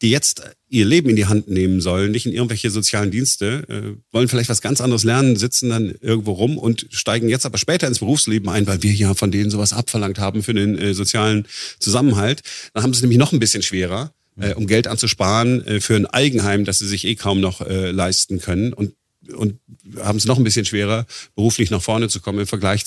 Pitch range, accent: 100-125 Hz, German